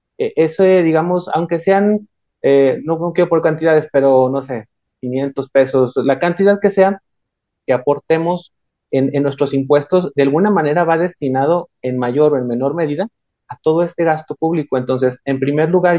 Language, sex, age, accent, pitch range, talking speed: Spanish, male, 30-49, Mexican, 130-165 Hz, 175 wpm